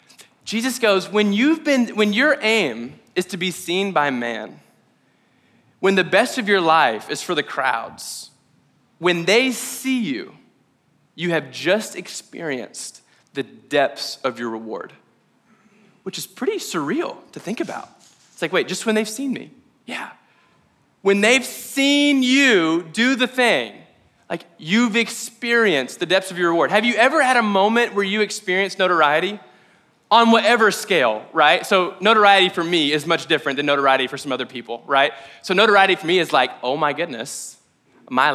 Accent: American